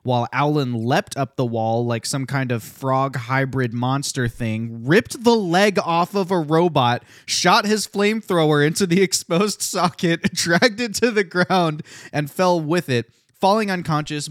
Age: 20-39